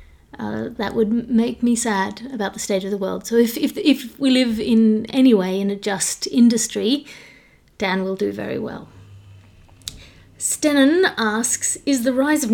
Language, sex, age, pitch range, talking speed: English, female, 30-49, 205-240 Hz, 170 wpm